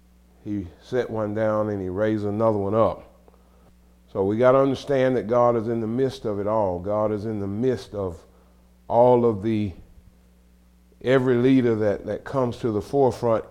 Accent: American